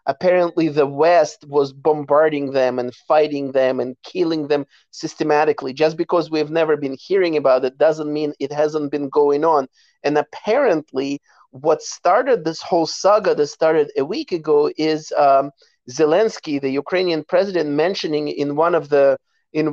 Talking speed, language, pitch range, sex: 150 wpm, English, 140-165 Hz, male